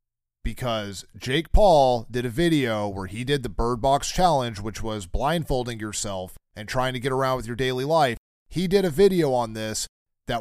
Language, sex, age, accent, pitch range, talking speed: English, male, 30-49, American, 110-140 Hz, 190 wpm